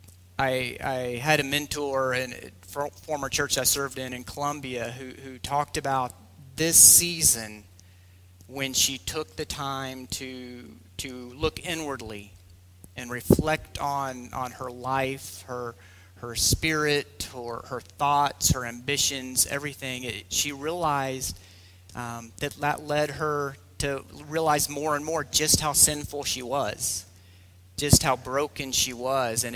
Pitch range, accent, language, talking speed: 100-140 Hz, American, English, 140 wpm